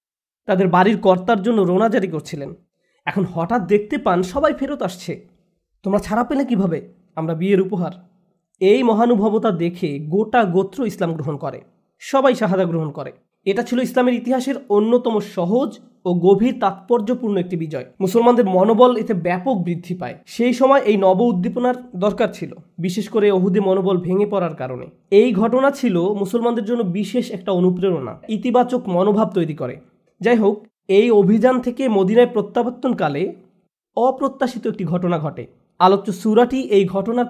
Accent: native